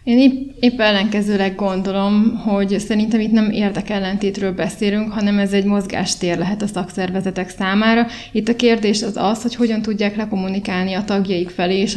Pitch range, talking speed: 195-220 Hz, 160 wpm